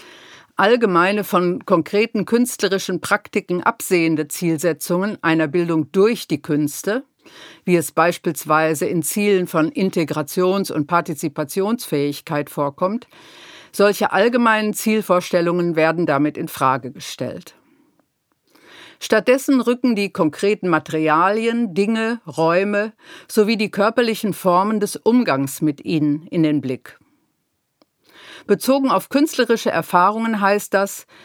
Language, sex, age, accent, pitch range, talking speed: German, female, 50-69, German, 170-230 Hz, 100 wpm